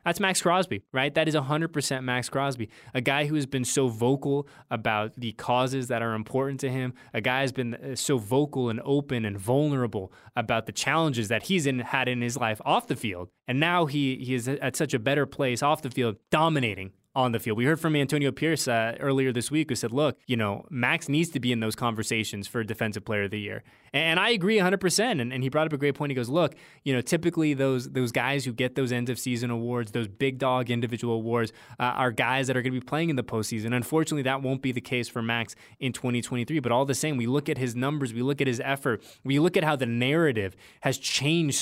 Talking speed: 240 wpm